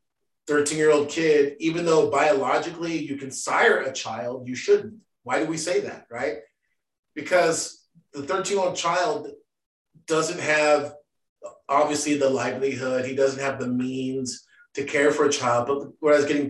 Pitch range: 140-175 Hz